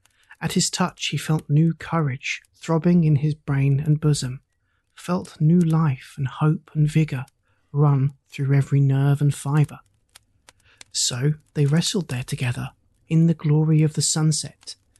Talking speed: 150 wpm